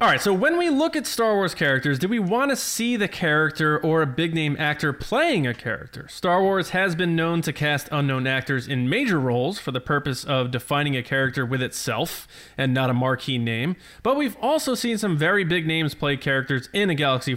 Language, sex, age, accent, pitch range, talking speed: English, male, 20-39, American, 130-180 Hz, 220 wpm